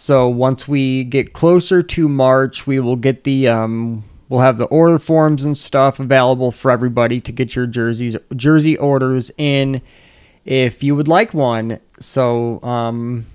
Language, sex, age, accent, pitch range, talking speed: English, male, 30-49, American, 115-135 Hz, 160 wpm